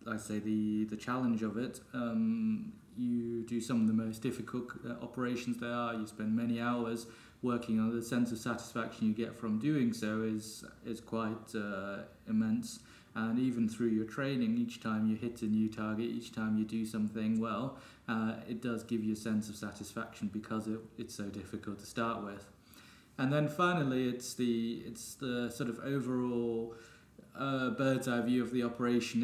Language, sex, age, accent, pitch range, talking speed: English, male, 20-39, British, 110-120 Hz, 185 wpm